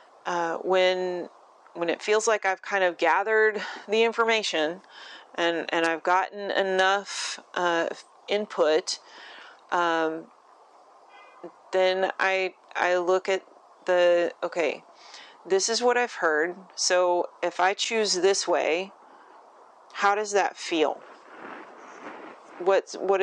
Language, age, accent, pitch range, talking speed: English, 30-49, American, 170-195 Hz, 115 wpm